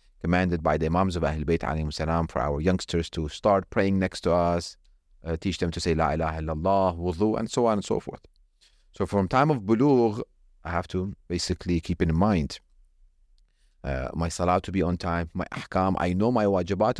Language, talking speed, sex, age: English, 195 wpm, male, 30-49